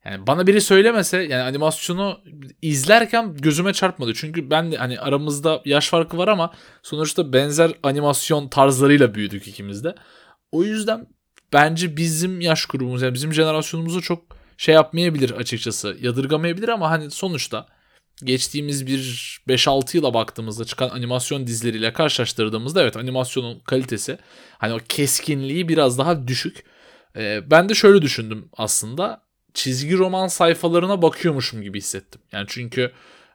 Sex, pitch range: male, 120-165 Hz